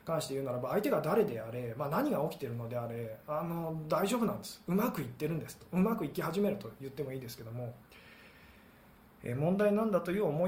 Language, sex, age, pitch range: Japanese, male, 20-39, 140-200 Hz